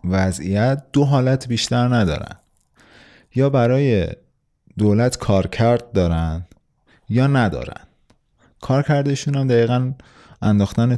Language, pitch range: Persian, 95-130 Hz